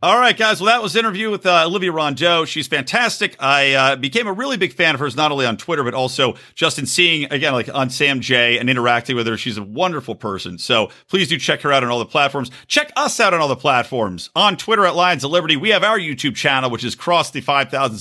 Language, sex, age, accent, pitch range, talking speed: English, male, 50-69, American, 115-165 Hz, 260 wpm